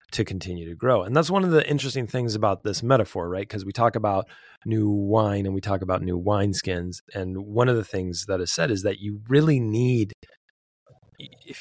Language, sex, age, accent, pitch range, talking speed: English, male, 30-49, American, 85-115 Hz, 215 wpm